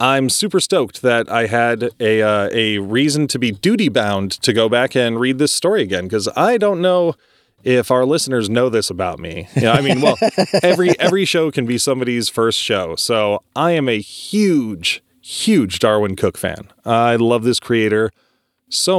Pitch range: 105-135 Hz